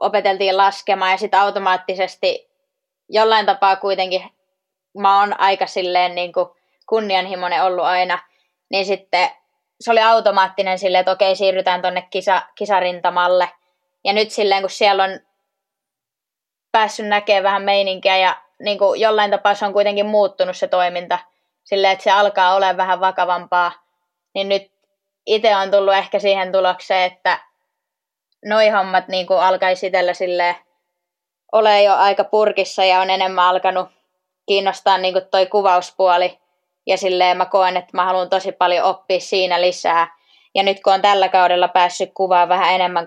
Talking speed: 145 wpm